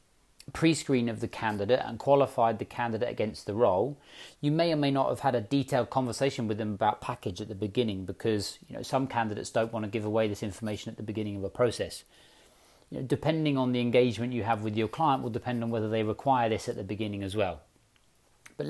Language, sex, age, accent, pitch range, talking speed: English, male, 40-59, British, 110-130 Hz, 220 wpm